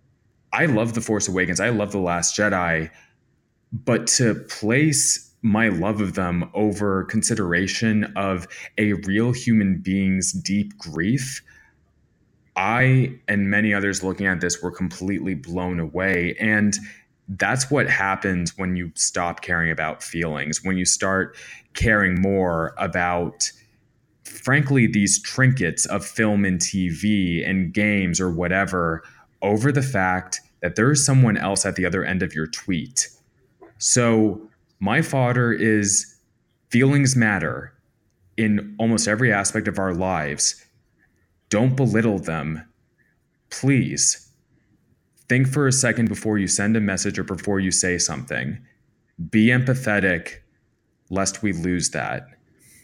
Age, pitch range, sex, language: 20-39, 90-110 Hz, male, English